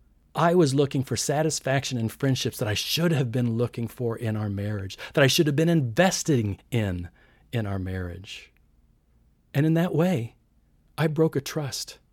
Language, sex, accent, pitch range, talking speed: English, male, American, 105-150 Hz, 175 wpm